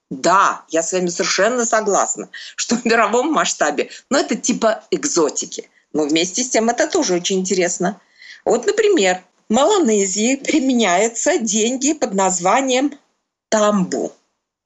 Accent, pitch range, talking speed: native, 195-285 Hz, 125 wpm